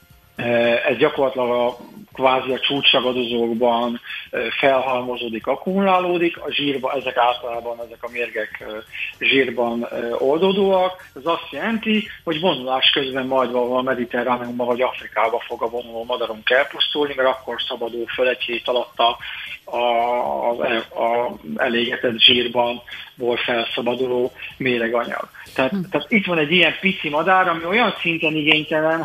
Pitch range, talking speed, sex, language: 120-155 Hz, 120 wpm, male, Hungarian